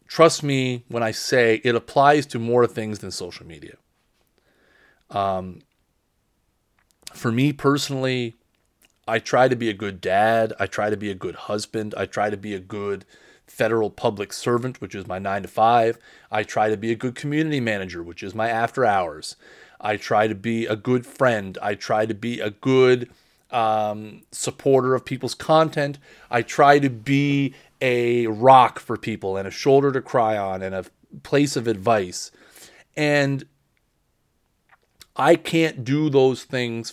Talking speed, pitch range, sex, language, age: 165 wpm, 105-135 Hz, male, English, 30-49